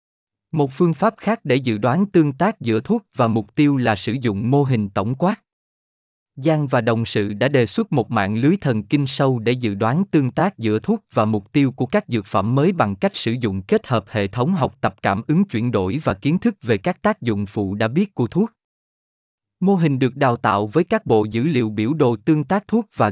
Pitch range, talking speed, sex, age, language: 110-165 Hz, 235 wpm, male, 20-39, Vietnamese